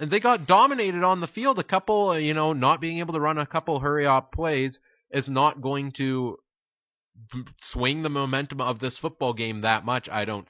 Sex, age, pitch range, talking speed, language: male, 30-49, 110-165 Hz, 205 wpm, English